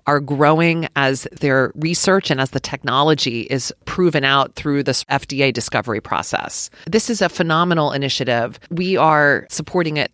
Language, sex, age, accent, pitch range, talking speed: English, female, 40-59, American, 135-165 Hz, 155 wpm